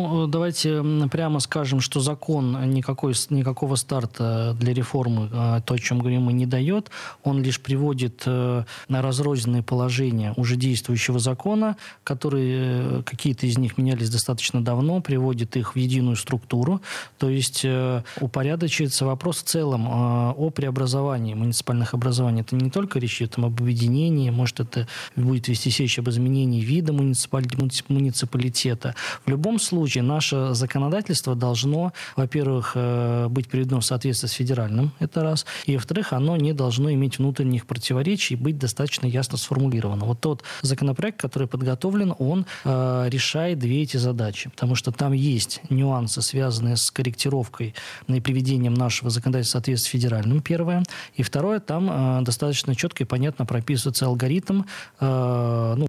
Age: 20-39